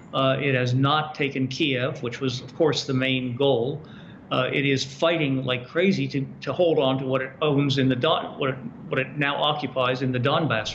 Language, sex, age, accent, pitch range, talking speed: English, male, 50-69, American, 135-165 Hz, 220 wpm